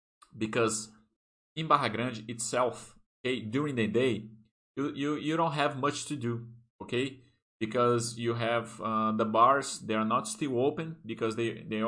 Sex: male